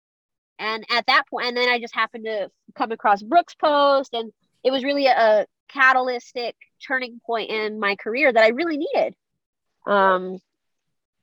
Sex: female